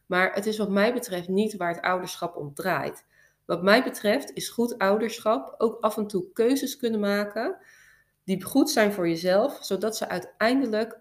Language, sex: Dutch, female